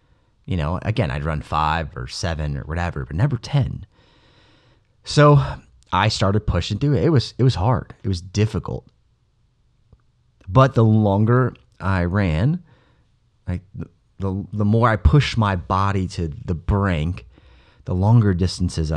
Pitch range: 95-130 Hz